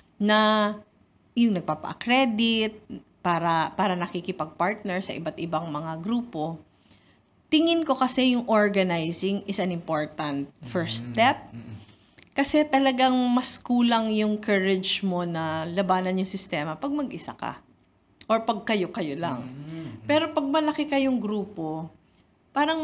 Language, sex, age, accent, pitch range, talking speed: Filipino, female, 20-39, native, 170-240 Hz, 125 wpm